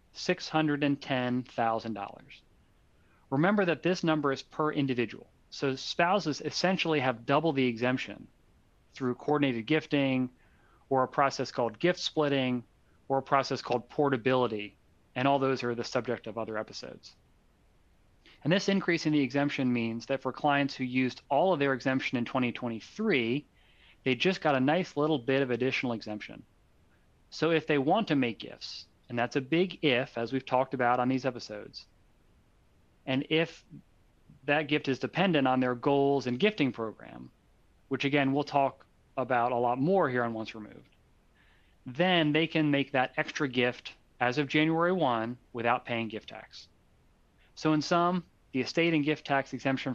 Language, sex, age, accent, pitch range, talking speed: English, male, 30-49, American, 120-150 Hz, 160 wpm